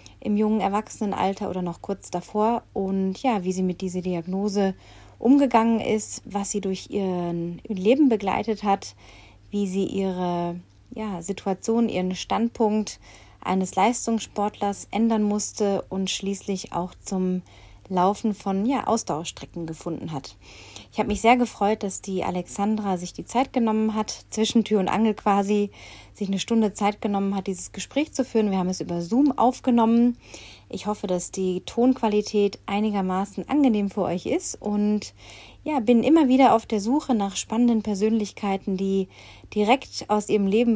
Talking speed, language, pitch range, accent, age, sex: 150 wpm, German, 185-220 Hz, German, 30-49, female